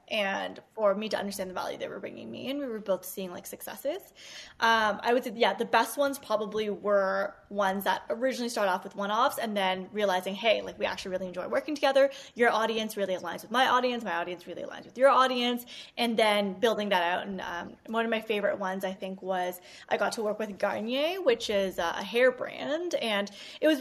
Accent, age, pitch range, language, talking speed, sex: American, 20-39, 205-275 Hz, English, 225 wpm, female